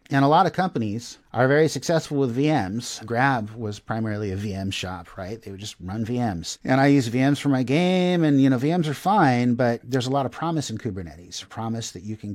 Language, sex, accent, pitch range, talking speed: English, male, American, 100-135 Hz, 230 wpm